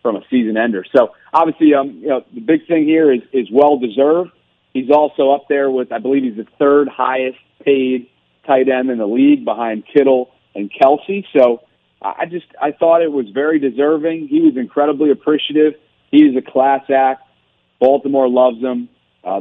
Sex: male